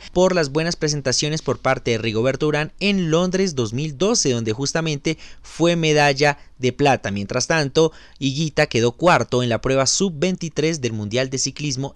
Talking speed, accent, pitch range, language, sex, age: 155 wpm, Colombian, 130-165 Hz, Spanish, male, 30-49